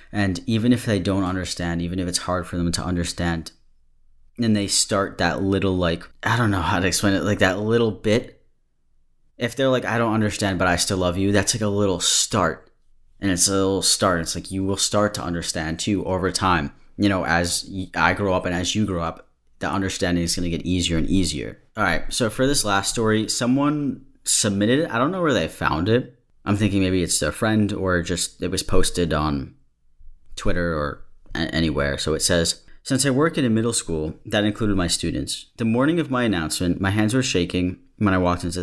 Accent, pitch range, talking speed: American, 85-105 Hz, 220 wpm